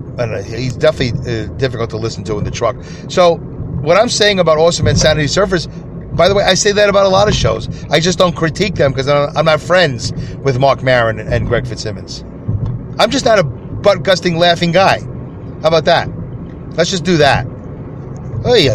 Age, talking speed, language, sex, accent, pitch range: 40-59, 200 wpm, English, male, American, 130-175 Hz